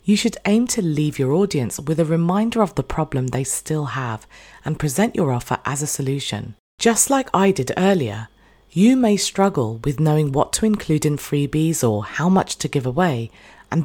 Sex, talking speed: female, 195 wpm